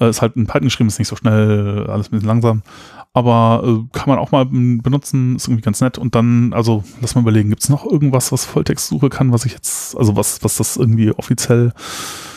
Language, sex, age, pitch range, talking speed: German, male, 20-39, 110-130 Hz, 220 wpm